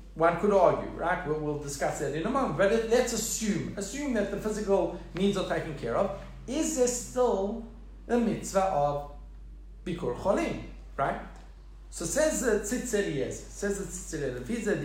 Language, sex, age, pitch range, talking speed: English, male, 50-69, 160-215 Hz, 140 wpm